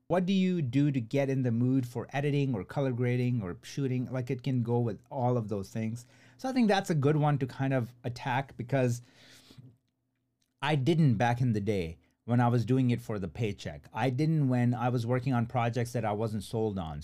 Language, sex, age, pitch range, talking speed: English, male, 30-49, 110-130 Hz, 225 wpm